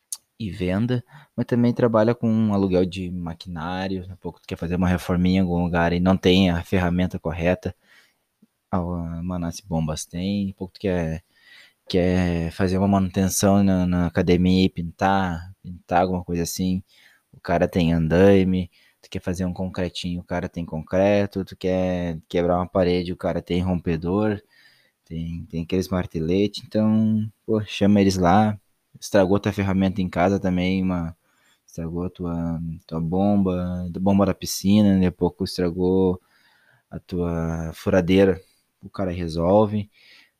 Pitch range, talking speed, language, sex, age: 90-100 Hz, 160 wpm, Portuguese, male, 20-39